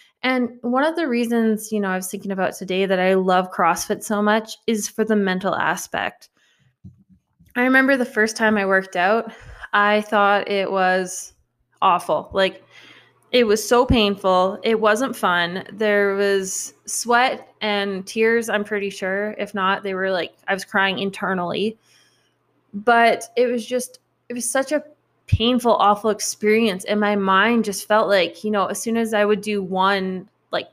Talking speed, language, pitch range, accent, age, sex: 170 wpm, English, 195-230 Hz, American, 20-39, female